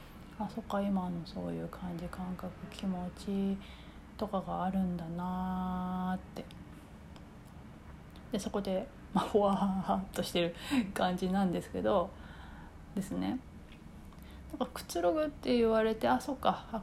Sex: female